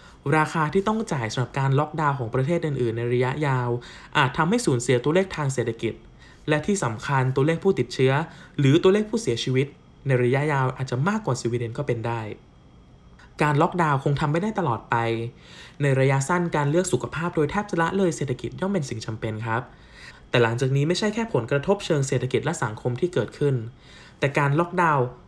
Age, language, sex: 20-39, Thai, male